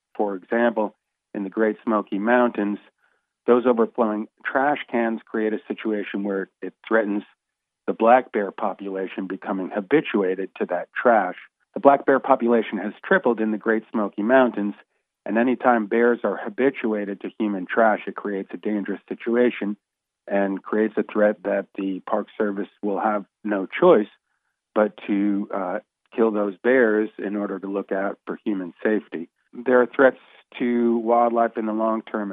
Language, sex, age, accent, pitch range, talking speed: English, male, 50-69, American, 100-115 Hz, 160 wpm